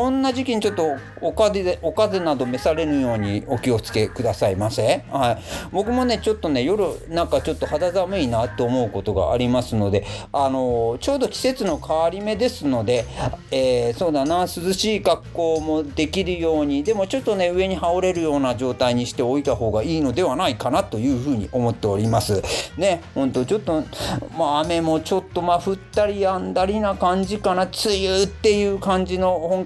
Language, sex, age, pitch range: Japanese, male, 40-59, 110-180 Hz